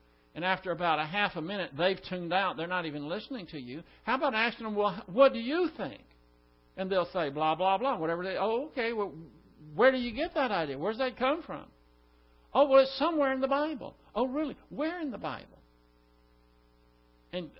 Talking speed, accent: 210 wpm, American